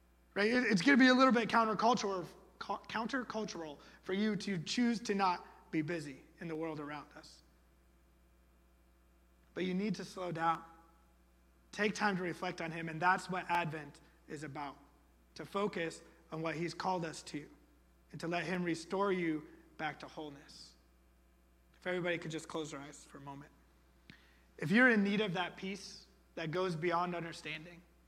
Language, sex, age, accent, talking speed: English, male, 30-49, American, 170 wpm